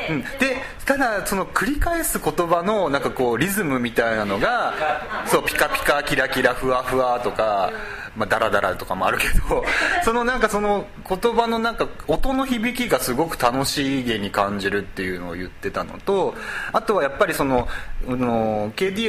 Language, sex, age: Japanese, male, 30-49